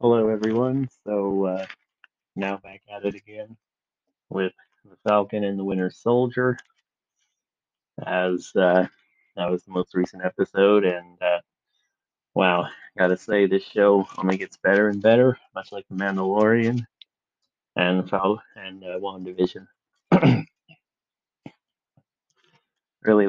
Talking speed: 115 wpm